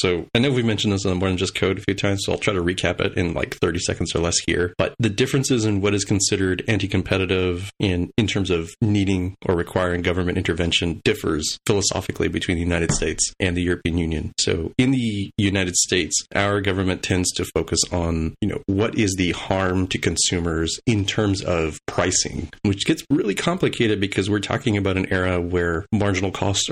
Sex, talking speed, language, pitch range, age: male, 205 wpm, English, 90-105 Hz, 30-49